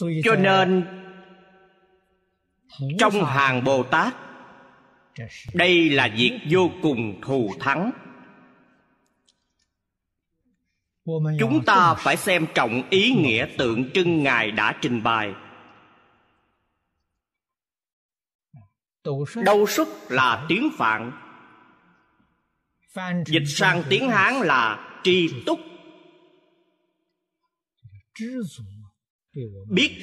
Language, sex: Vietnamese, male